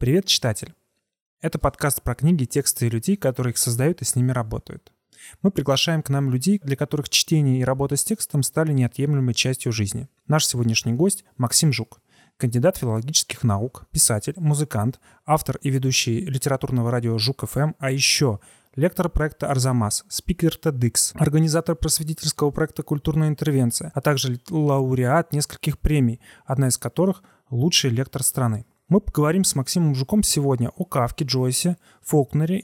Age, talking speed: 30-49, 150 wpm